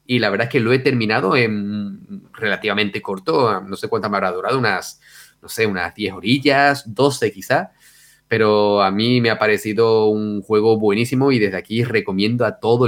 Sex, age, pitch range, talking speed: male, 30-49, 115-155 Hz, 185 wpm